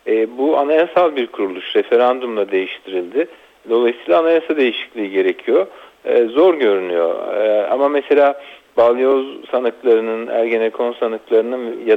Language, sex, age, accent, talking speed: Turkish, male, 50-69, native, 95 wpm